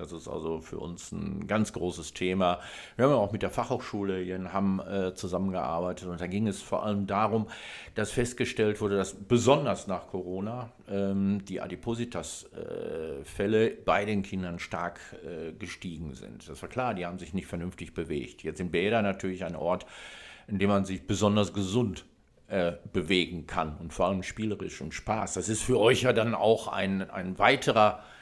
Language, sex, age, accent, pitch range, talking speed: German, male, 50-69, German, 90-110 Hz, 180 wpm